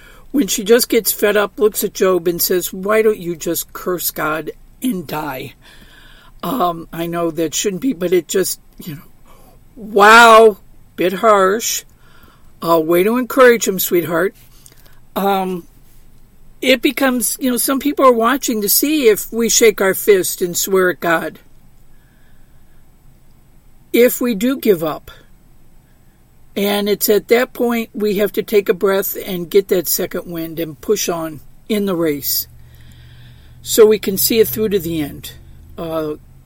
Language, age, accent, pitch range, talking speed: English, 50-69, American, 160-215 Hz, 160 wpm